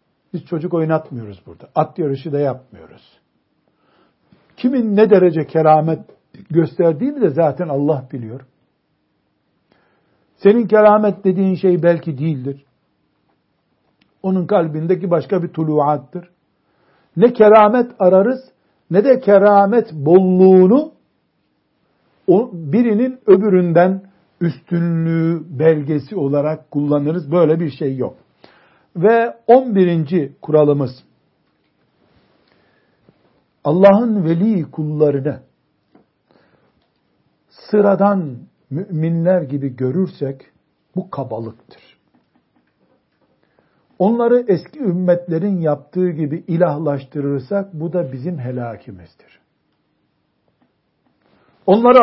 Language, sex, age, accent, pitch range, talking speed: Turkish, male, 60-79, native, 150-195 Hz, 80 wpm